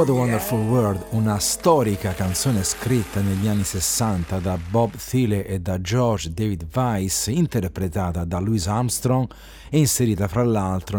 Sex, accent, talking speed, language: male, native, 140 wpm, Italian